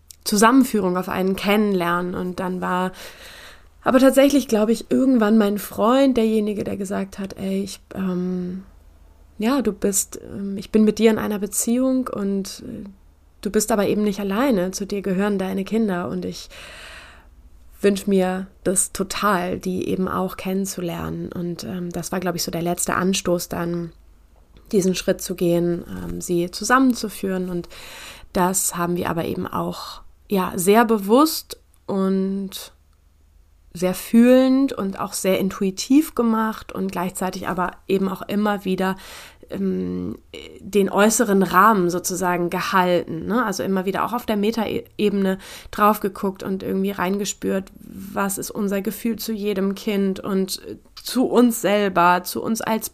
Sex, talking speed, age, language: female, 150 wpm, 20-39, German